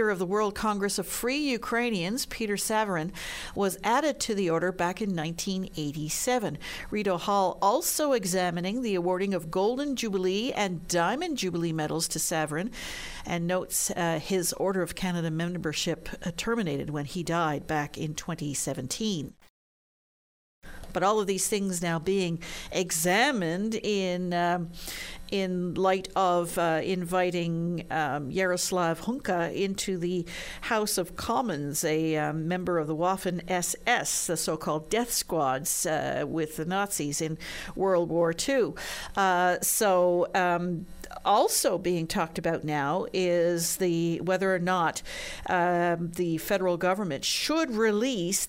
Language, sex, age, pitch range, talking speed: English, female, 50-69, 170-200 Hz, 135 wpm